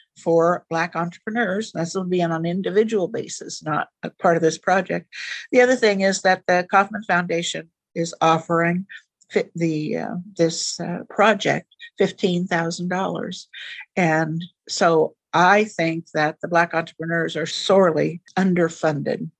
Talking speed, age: 140 wpm, 60-79